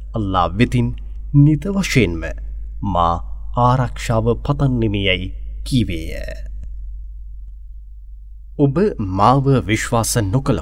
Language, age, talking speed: English, 30-49, 80 wpm